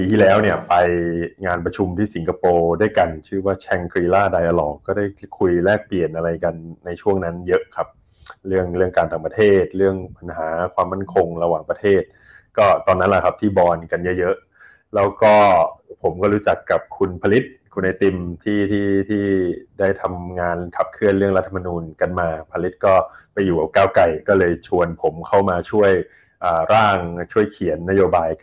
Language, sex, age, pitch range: Thai, male, 20-39, 85-100 Hz